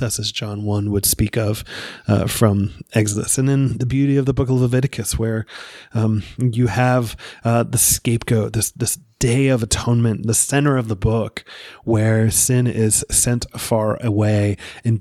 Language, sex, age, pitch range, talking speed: English, male, 20-39, 105-120 Hz, 170 wpm